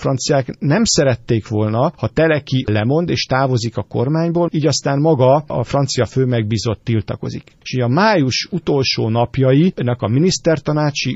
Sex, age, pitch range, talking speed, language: male, 50-69, 120-150 Hz, 145 wpm, Hungarian